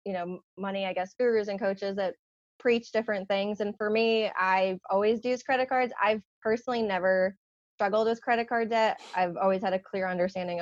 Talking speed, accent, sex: 190 wpm, American, female